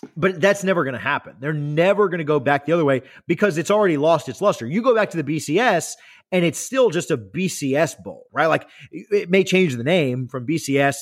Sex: male